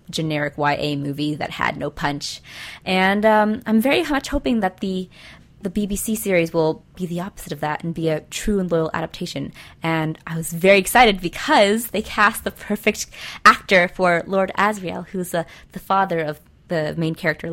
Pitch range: 160-210 Hz